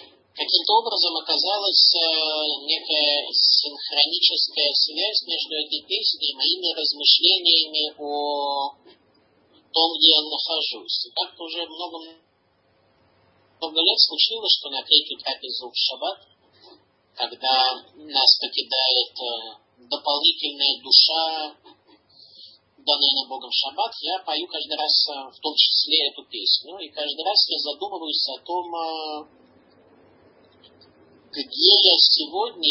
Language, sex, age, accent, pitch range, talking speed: Russian, male, 40-59, native, 135-165 Hz, 105 wpm